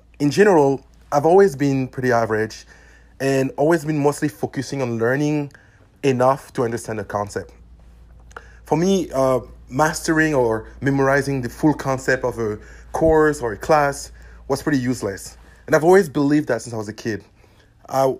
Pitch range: 110-150 Hz